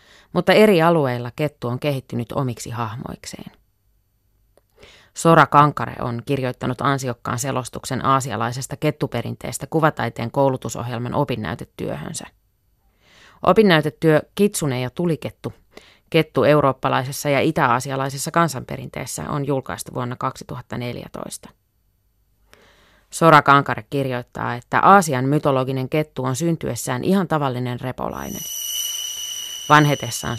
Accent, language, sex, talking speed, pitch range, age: native, Finnish, female, 90 wpm, 115-150 Hz, 30-49